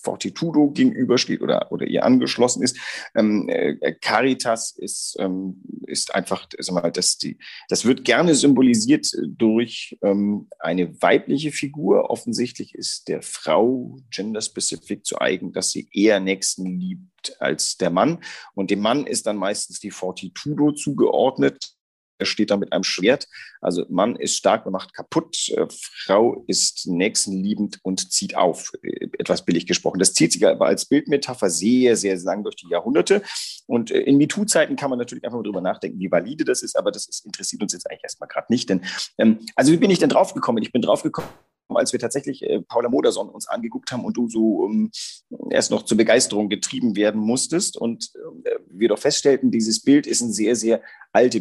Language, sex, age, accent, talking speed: German, male, 40-59, German, 175 wpm